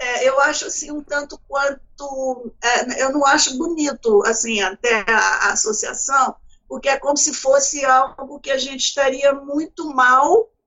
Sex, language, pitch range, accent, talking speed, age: female, Portuguese, 250-315 Hz, Brazilian, 165 wpm, 50-69